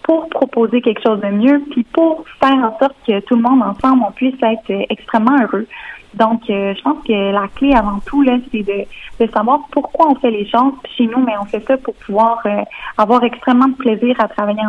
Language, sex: French, female